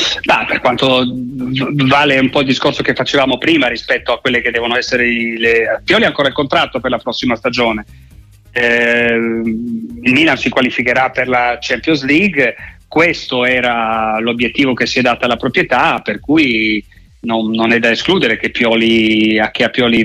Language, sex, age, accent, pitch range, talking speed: Italian, male, 30-49, native, 110-125 Hz, 165 wpm